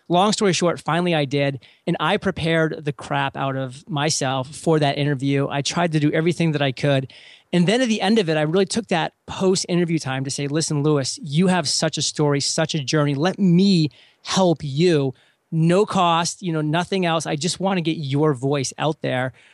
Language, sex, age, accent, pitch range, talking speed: English, male, 30-49, American, 145-180 Hz, 210 wpm